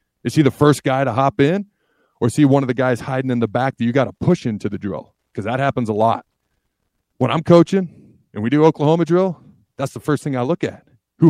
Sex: male